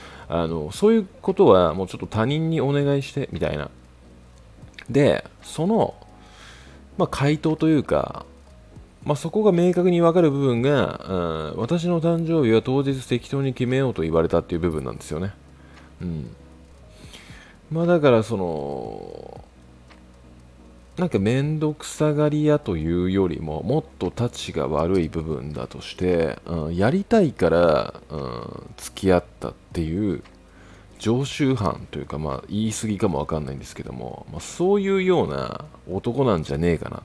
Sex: male